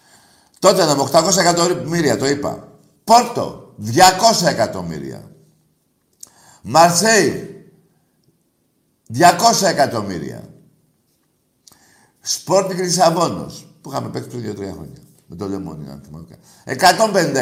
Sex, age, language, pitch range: male, 60-79, Greek, 130-185 Hz